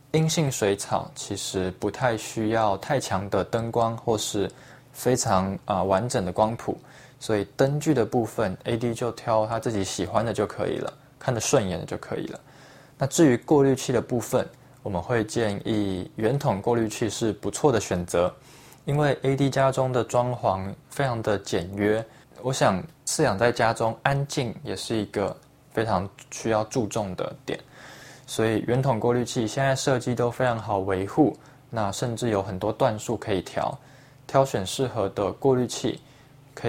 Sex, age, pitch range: male, 20-39, 105-135 Hz